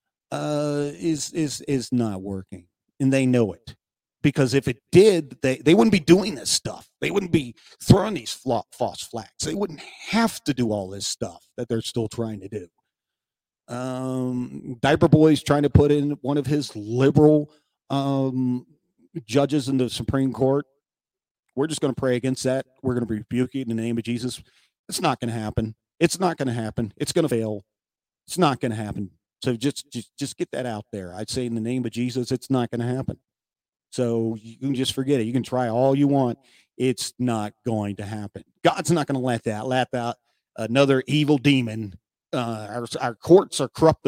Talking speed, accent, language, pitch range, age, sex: 205 wpm, American, English, 115-145 Hz, 40-59, male